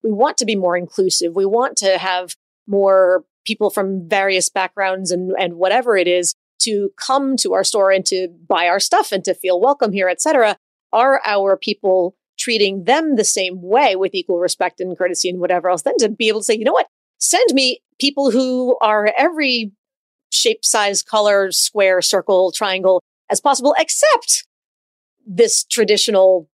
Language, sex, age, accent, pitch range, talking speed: English, female, 30-49, American, 185-235 Hz, 180 wpm